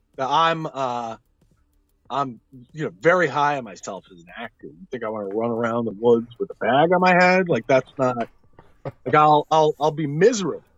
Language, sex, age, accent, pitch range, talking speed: English, male, 30-49, American, 95-150 Hz, 200 wpm